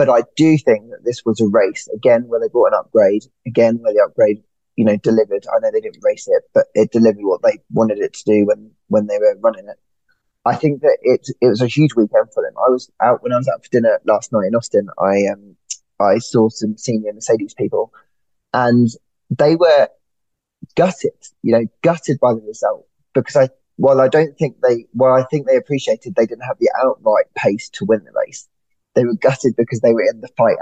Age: 20-39